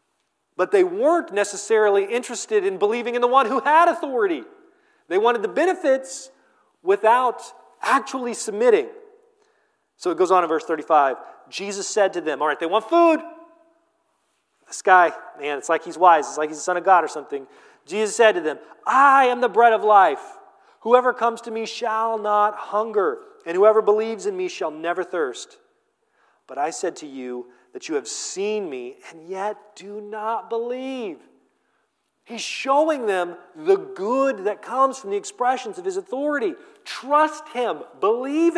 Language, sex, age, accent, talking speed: English, male, 40-59, American, 170 wpm